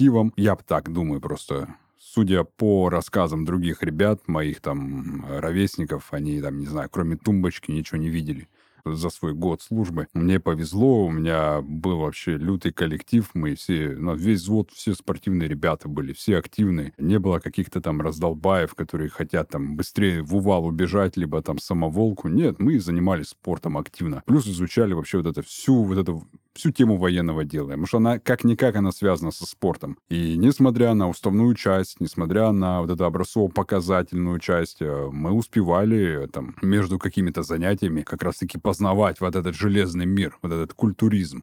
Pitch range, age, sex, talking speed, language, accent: 85-100 Hz, 30-49, male, 160 wpm, Russian, native